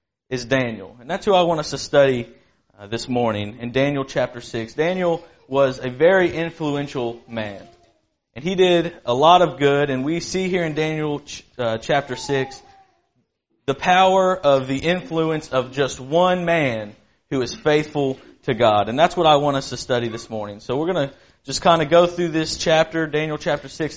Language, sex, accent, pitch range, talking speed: English, male, American, 125-160 Hz, 195 wpm